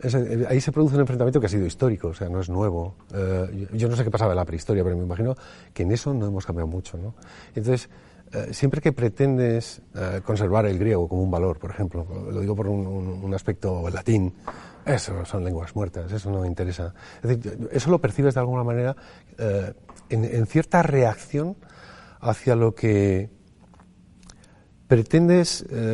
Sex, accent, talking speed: male, Spanish, 170 wpm